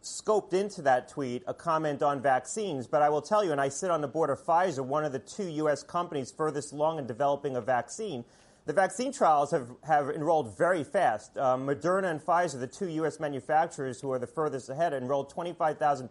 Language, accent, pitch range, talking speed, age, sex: English, American, 135-170 Hz, 210 wpm, 30-49, male